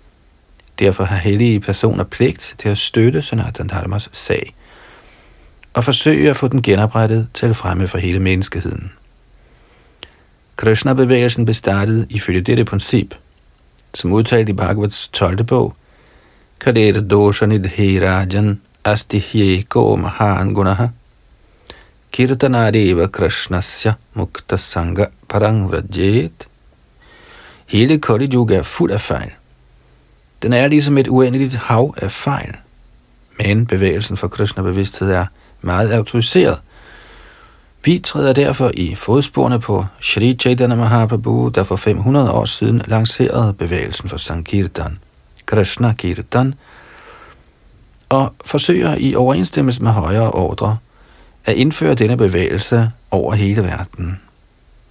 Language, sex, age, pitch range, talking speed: Danish, male, 50-69, 95-120 Hz, 105 wpm